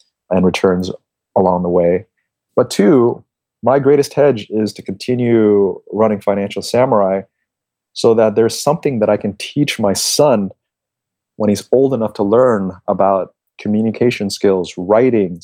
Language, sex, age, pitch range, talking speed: English, male, 30-49, 95-115 Hz, 140 wpm